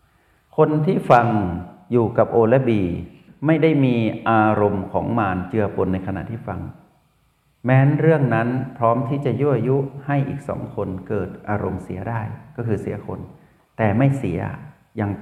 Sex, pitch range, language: male, 105-140 Hz, Thai